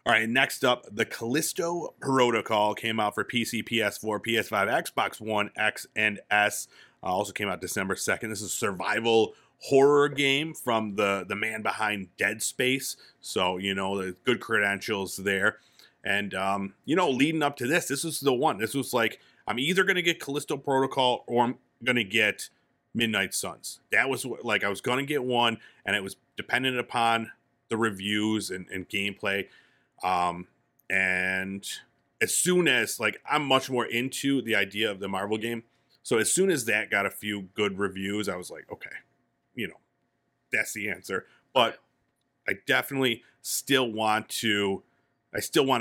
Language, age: English, 30-49